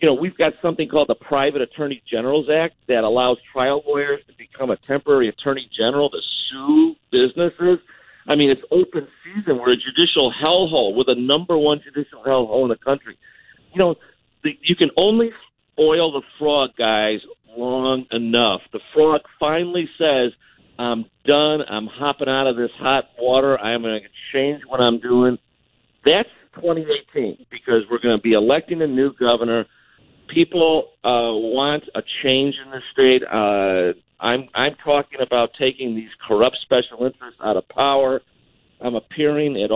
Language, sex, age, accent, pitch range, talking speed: English, male, 50-69, American, 120-160 Hz, 165 wpm